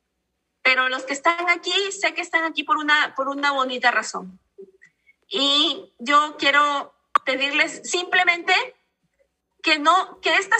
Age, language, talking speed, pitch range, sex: 40-59, Spanish, 135 wpm, 255-335 Hz, female